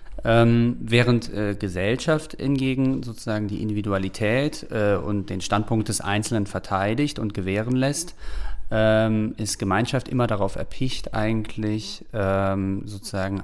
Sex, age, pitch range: male, 40-59, 95-115 Hz